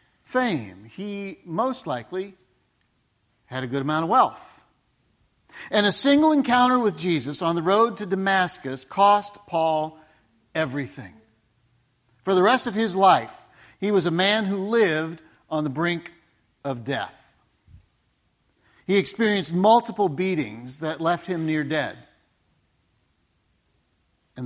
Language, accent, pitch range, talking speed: English, American, 140-205 Hz, 125 wpm